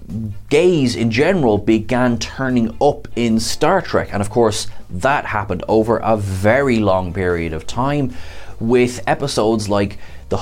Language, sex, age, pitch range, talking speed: English, male, 20-39, 100-125 Hz, 145 wpm